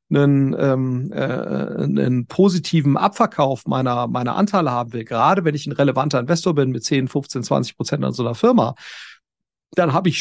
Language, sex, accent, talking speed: German, male, German, 170 wpm